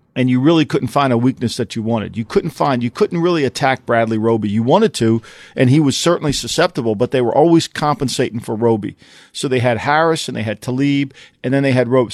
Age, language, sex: 40-59, English, male